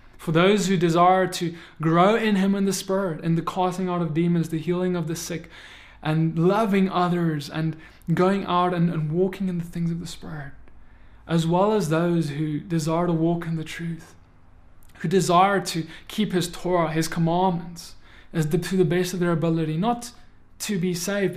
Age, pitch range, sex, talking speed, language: 20-39, 160-190 Hz, male, 190 wpm, English